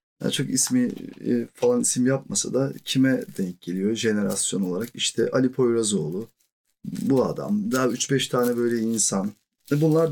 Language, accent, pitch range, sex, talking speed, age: Turkish, native, 110-135 Hz, male, 135 wpm, 40-59